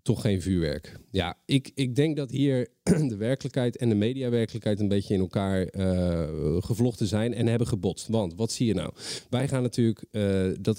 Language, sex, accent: Dutch, male, Dutch